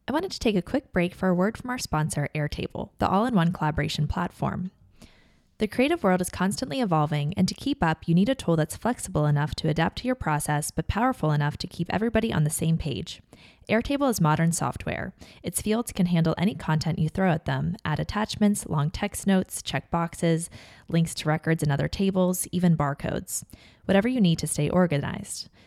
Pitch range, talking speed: 150-195 Hz, 200 wpm